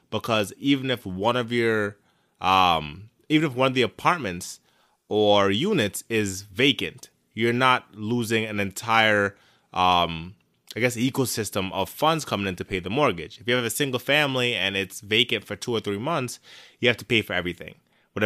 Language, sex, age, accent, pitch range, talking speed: English, male, 20-39, American, 100-125 Hz, 180 wpm